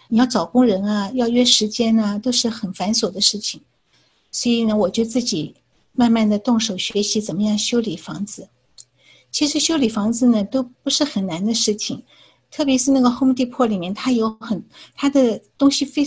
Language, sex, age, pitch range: Chinese, female, 50-69, 205-245 Hz